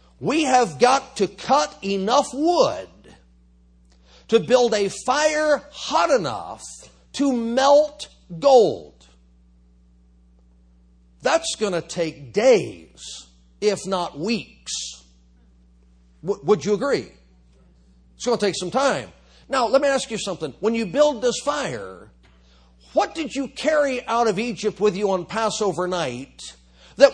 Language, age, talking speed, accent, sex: English, 50-69, 125 wpm, American, male